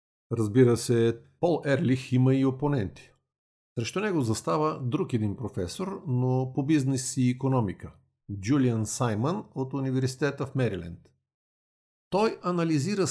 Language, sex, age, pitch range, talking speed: Bulgarian, male, 50-69, 115-145 Hz, 120 wpm